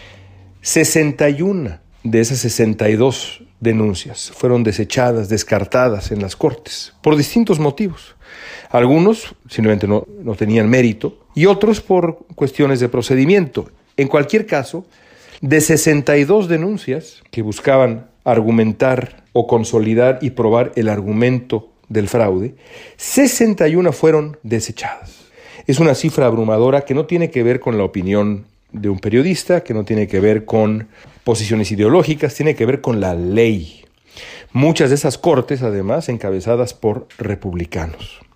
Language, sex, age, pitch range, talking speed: Spanish, male, 40-59, 110-150 Hz, 130 wpm